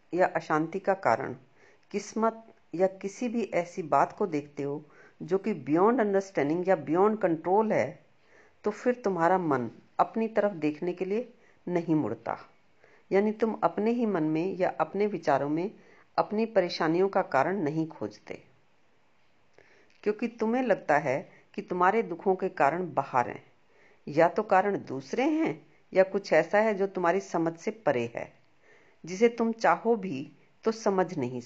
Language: Hindi